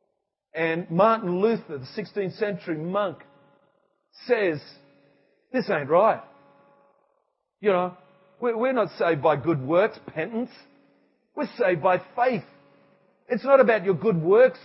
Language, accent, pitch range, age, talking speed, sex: English, Australian, 185-245 Hz, 40-59, 125 wpm, male